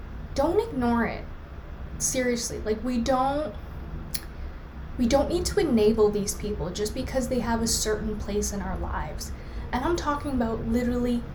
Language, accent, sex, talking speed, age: English, American, female, 155 wpm, 20-39